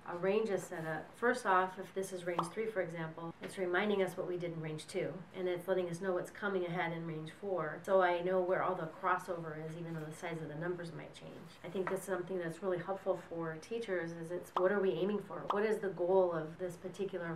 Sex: female